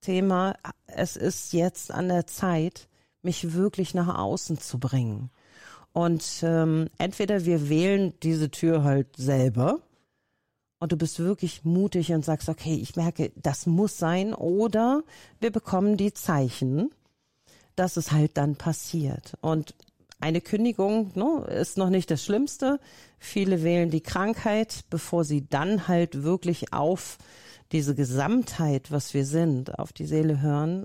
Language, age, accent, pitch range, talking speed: German, 40-59, German, 145-190 Hz, 140 wpm